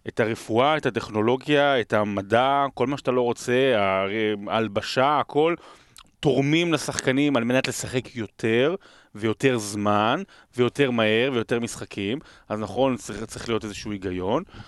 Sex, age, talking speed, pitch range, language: male, 30-49, 130 wpm, 110-145 Hz, Hebrew